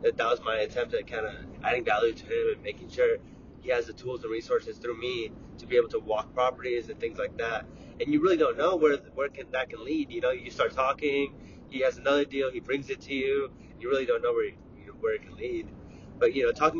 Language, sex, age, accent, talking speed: English, male, 20-39, American, 255 wpm